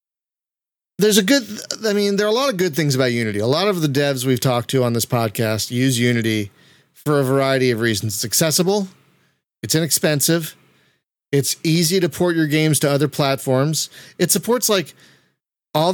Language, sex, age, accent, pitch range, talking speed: English, male, 30-49, American, 120-160 Hz, 185 wpm